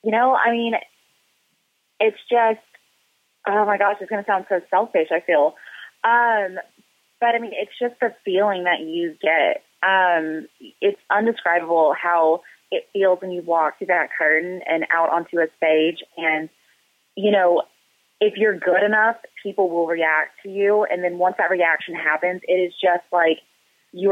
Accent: American